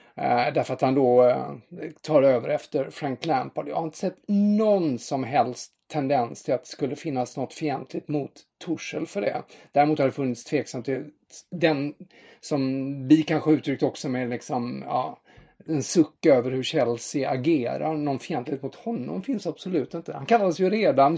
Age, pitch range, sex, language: 30-49, 130-165 Hz, male, English